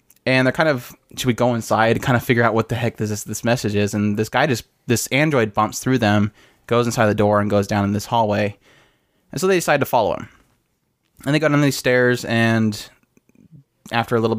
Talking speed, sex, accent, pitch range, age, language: 235 wpm, male, American, 105-125 Hz, 20-39, English